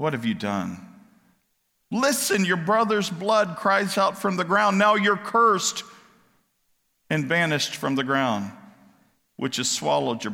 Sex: male